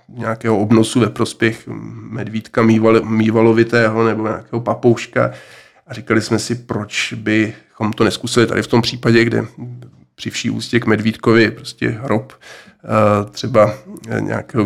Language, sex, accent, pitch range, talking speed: Czech, male, native, 105-115 Hz, 125 wpm